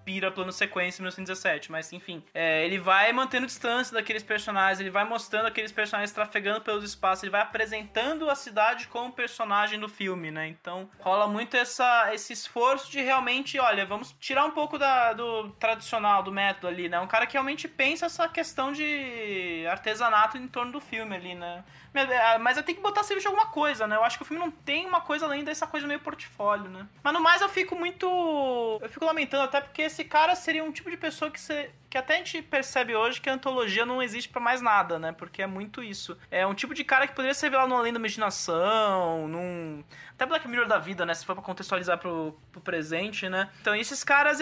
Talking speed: 220 wpm